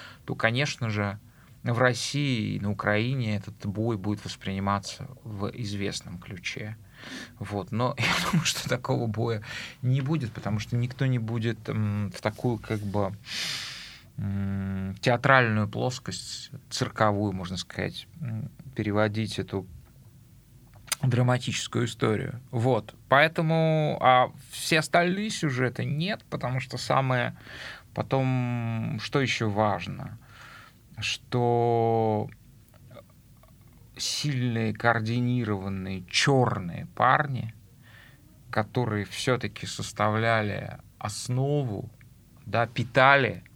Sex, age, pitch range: male, 20-39, 110-130 Hz